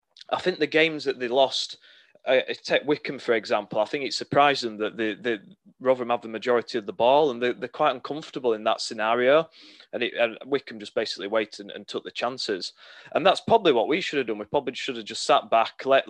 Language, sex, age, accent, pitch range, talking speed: English, male, 30-49, British, 110-140 Hz, 235 wpm